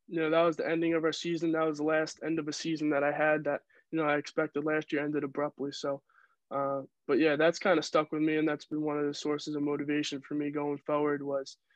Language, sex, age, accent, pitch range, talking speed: English, male, 20-39, American, 140-150 Hz, 270 wpm